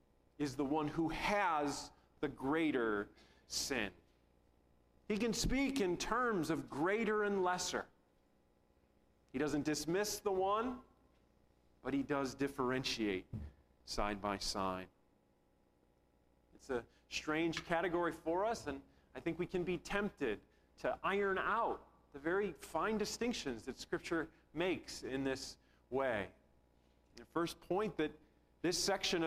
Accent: American